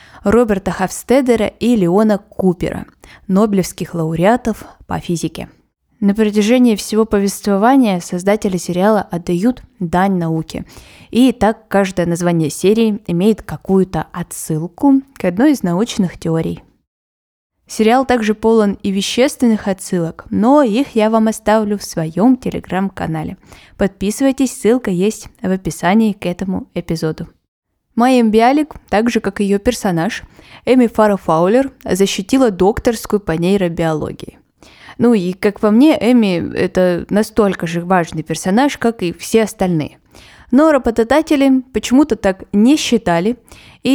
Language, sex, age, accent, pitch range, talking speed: Russian, female, 20-39, native, 180-230 Hz, 120 wpm